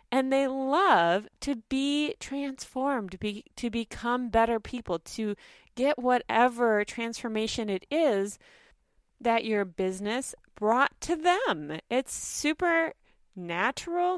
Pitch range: 200-290 Hz